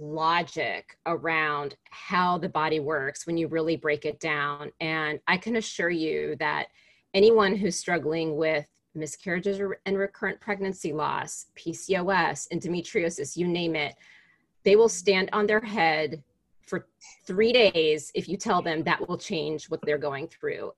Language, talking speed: English, 150 wpm